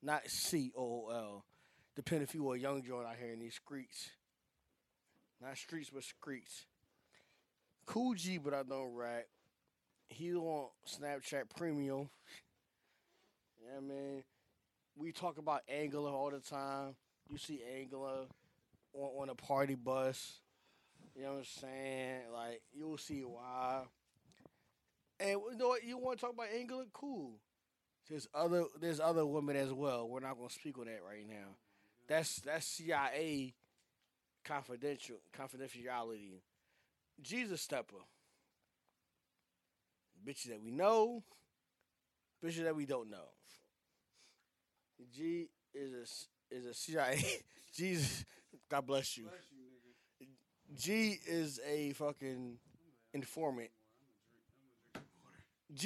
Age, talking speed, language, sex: 20-39, 120 wpm, English, male